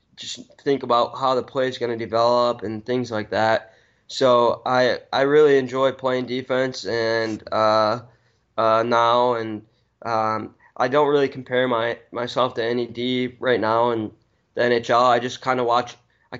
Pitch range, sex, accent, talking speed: 115-130 Hz, male, American, 170 wpm